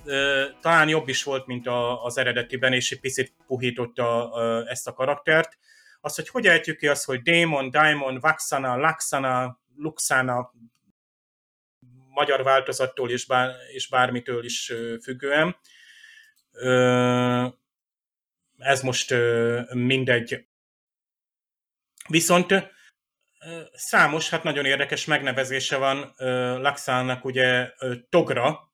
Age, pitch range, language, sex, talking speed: 30-49, 125-150 Hz, Hungarian, male, 95 wpm